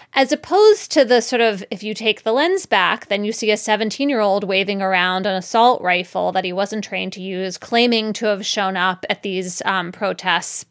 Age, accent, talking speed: 20-39, American, 205 wpm